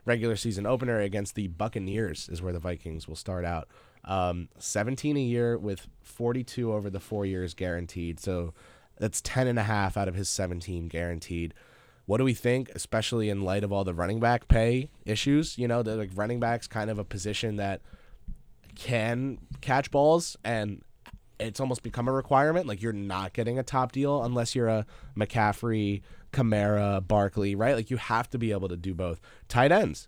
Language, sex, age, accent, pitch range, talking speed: English, male, 20-39, American, 90-115 Hz, 190 wpm